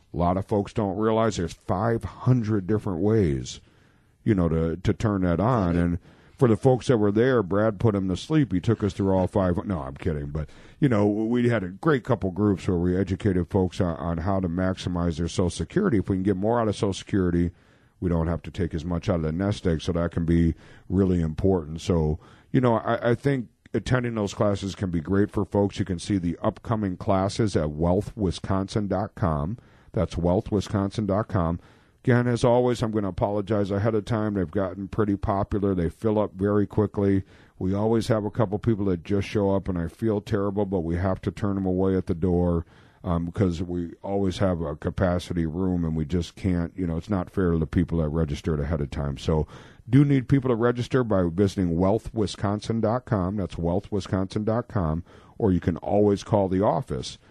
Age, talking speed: 50-69, 205 wpm